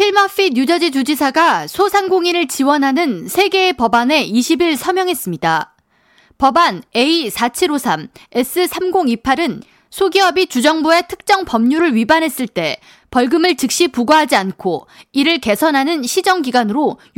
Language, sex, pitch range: Korean, female, 245-345 Hz